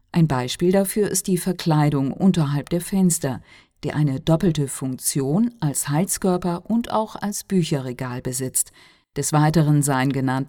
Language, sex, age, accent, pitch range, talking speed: Italian, female, 50-69, German, 140-185 Hz, 135 wpm